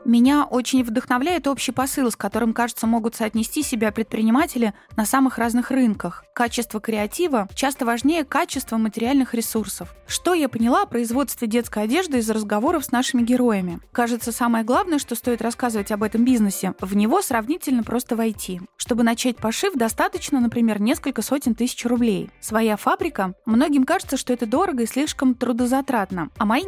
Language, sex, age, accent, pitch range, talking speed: Russian, female, 20-39, native, 220-265 Hz, 155 wpm